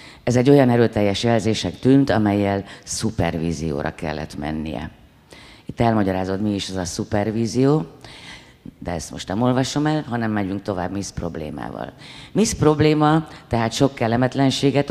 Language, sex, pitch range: Hungarian, female, 95-130 Hz